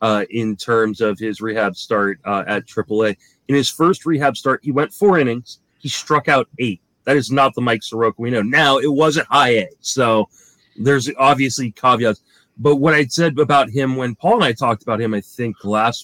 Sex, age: male, 30-49